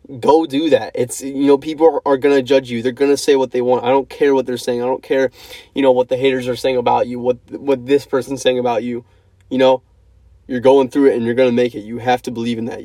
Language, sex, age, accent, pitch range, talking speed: English, male, 20-39, American, 115-140 Hz, 280 wpm